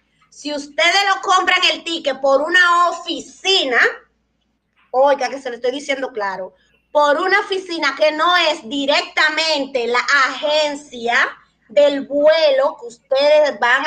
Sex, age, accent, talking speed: female, 30-49, American, 130 wpm